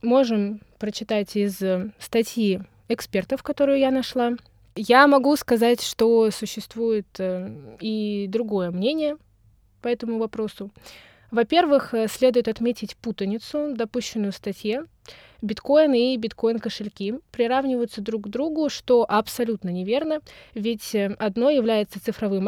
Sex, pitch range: female, 210-260 Hz